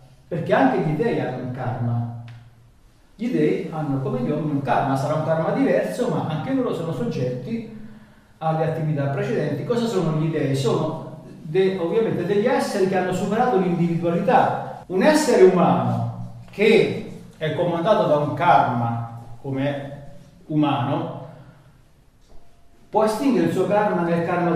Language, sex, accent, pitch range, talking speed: Italian, male, native, 140-200 Hz, 140 wpm